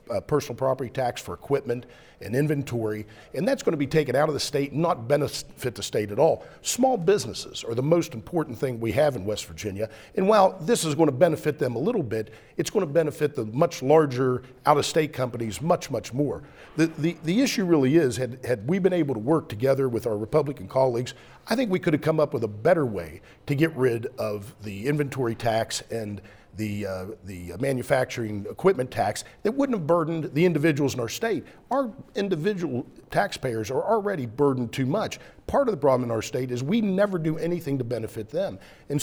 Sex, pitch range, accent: male, 120-170 Hz, American